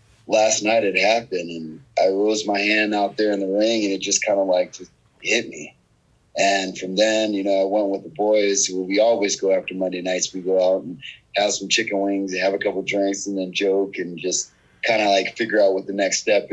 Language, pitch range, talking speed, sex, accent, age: English, 95-110 Hz, 240 wpm, male, American, 30-49